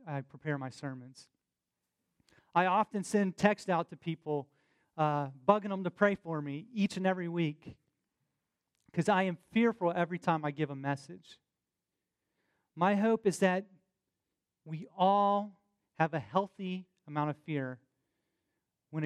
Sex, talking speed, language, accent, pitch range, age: male, 140 wpm, English, American, 150-195 Hz, 30-49